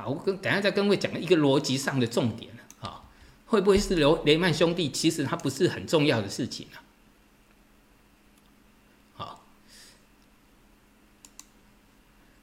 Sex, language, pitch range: male, Chinese, 120-190 Hz